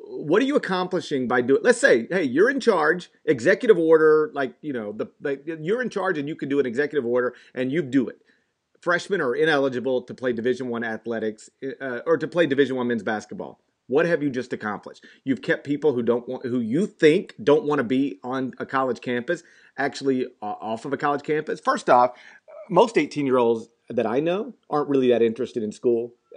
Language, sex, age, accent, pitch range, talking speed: English, male, 40-59, American, 125-175 Hz, 205 wpm